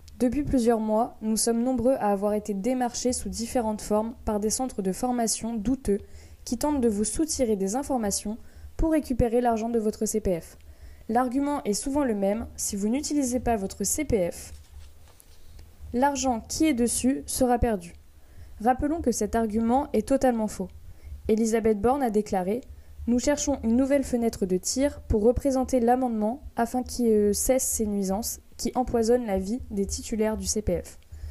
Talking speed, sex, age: 160 wpm, female, 20-39